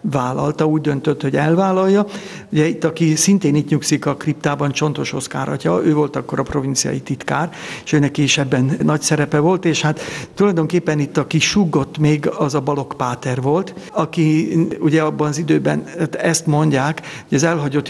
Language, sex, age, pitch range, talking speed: Hungarian, male, 60-79, 145-165 Hz, 170 wpm